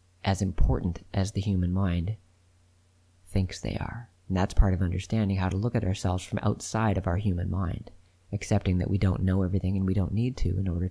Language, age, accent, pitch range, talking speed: English, 30-49, American, 90-105 Hz, 210 wpm